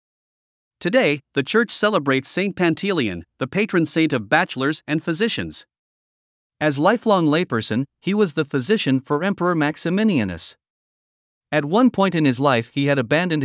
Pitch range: 135-185 Hz